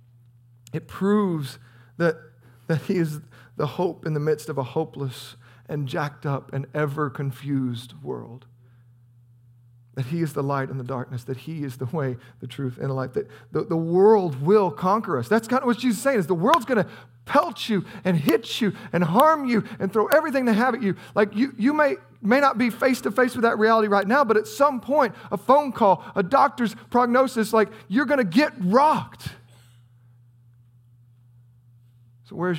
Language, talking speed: English, 185 wpm